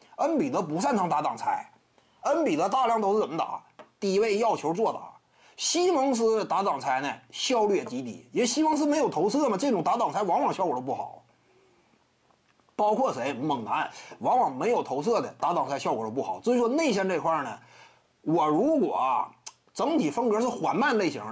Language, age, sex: Chinese, 30-49, male